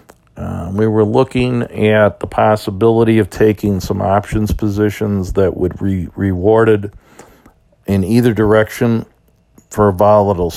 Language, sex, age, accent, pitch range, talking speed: English, male, 50-69, American, 95-110 Hz, 125 wpm